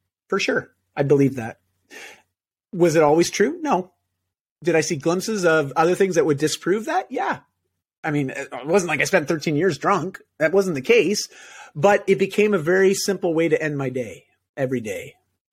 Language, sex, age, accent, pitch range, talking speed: English, male, 30-49, American, 125-175 Hz, 190 wpm